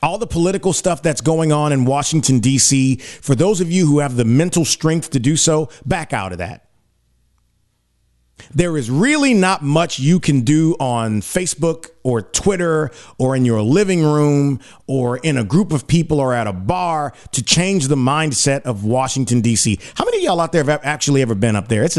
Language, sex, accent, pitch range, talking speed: English, male, American, 115-170 Hz, 200 wpm